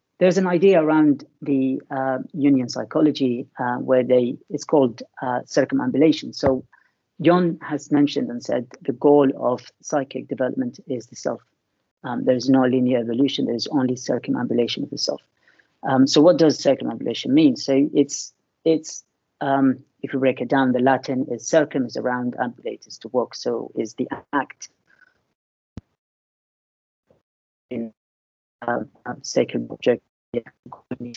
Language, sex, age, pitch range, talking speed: English, female, 40-59, 130-150 Hz, 140 wpm